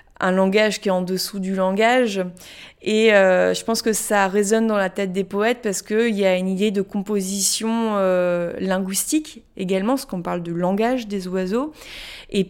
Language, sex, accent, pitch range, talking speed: French, female, French, 185-210 Hz, 185 wpm